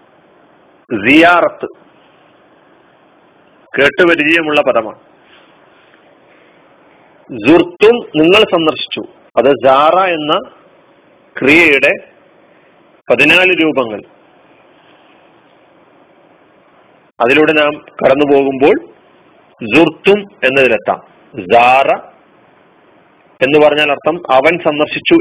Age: 40-59